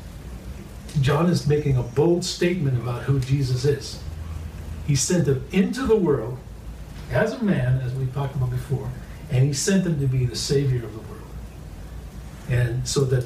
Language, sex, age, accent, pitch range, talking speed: English, male, 50-69, American, 120-155 Hz, 170 wpm